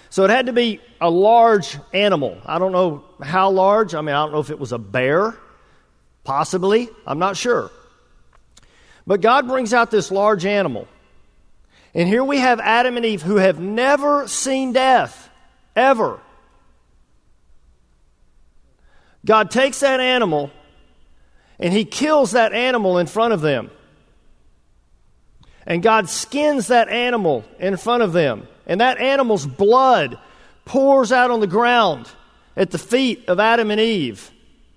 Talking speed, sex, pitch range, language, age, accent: 145 wpm, male, 175-245 Hz, English, 50-69, American